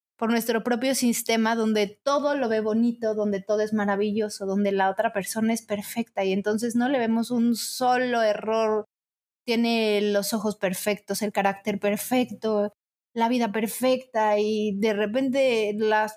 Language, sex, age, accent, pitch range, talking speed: Spanish, female, 20-39, Mexican, 205-240 Hz, 150 wpm